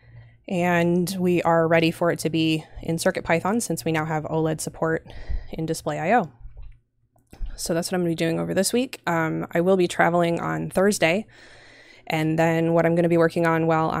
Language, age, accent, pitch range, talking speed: English, 20-39, American, 155-170 Hz, 190 wpm